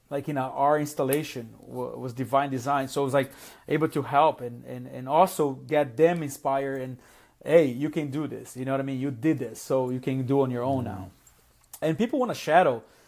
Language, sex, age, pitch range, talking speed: English, male, 30-49, 135-160 Hz, 235 wpm